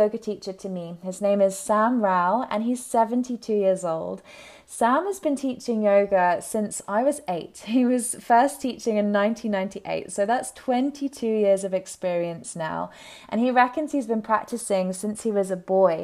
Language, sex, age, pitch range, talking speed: English, female, 20-39, 190-230 Hz, 175 wpm